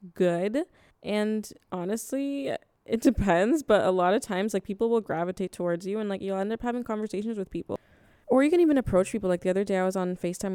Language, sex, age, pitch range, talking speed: English, female, 20-39, 185-235 Hz, 220 wpm